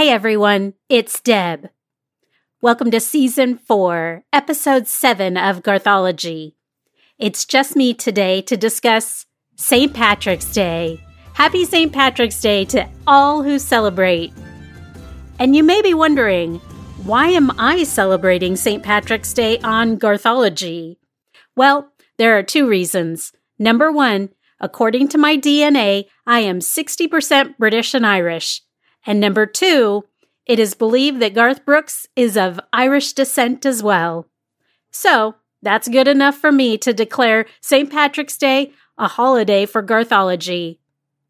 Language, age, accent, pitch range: English, 40-59, American, 195-270 Hz